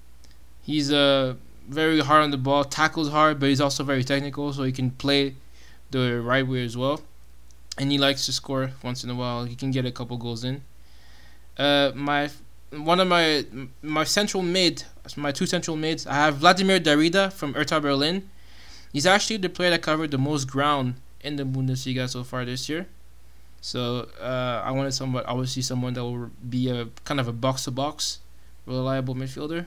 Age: 20-39